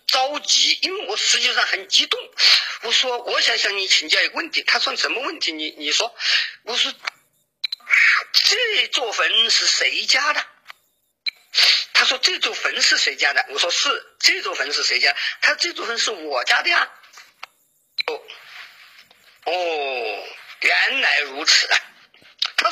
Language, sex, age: Chinese, male, 50-69